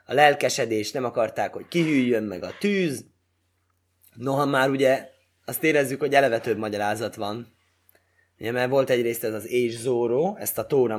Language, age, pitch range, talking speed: Hungarian, 20-39, 110-150 Hz, 160 wpm